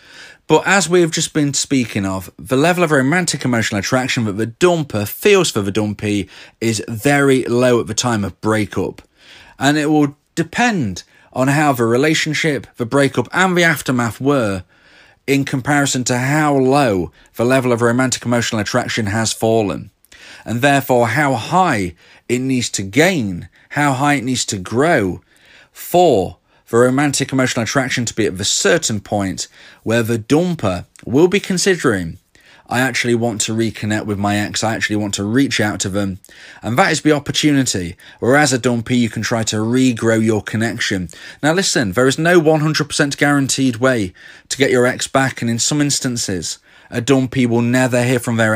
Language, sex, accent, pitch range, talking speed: English, male, British, 110-145 Hz, 175 wpm